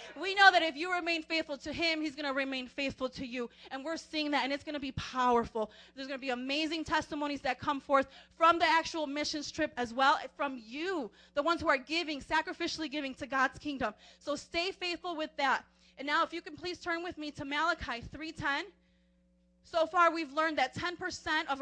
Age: 30-49